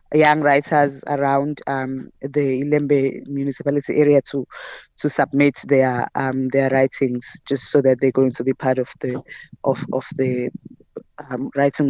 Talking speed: 150 wpm